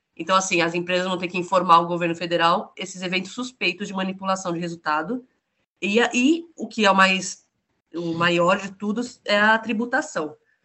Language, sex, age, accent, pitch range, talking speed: Portuguese, female, 20-39, Brazilian, 175-225 Hz, 180 wpm